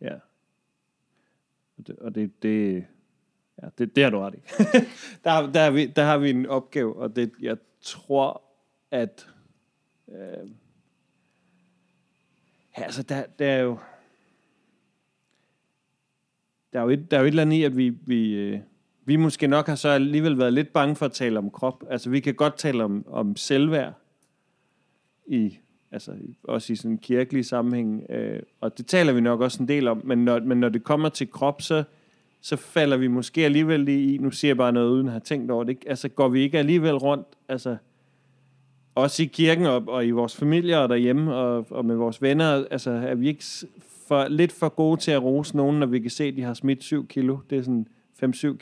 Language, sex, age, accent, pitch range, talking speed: Danish, male, 40-59, native, 125-150 Hz, 195 wpm